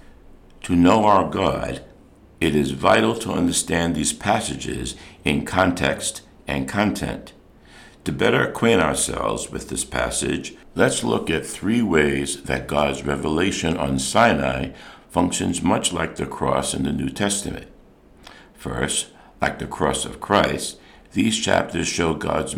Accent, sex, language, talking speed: American, male, English, 135 wpm